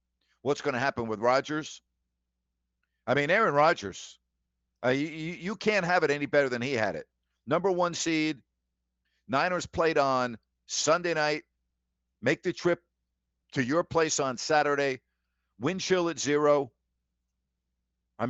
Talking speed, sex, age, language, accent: 140 wpm, male, 50-69, English, American